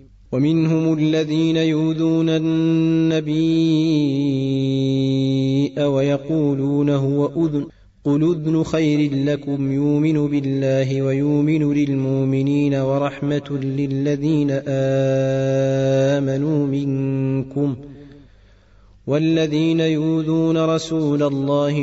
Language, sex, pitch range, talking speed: Arabic, male, 135-150 Hz, 65 wpm